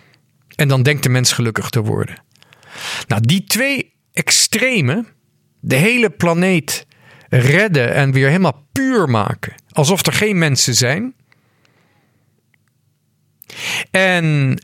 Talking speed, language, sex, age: 110 wpm, Dutch, male, 50-69